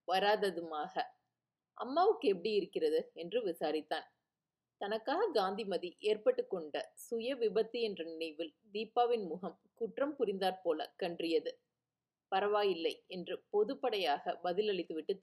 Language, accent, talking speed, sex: Tamil, native, 85 wpm, female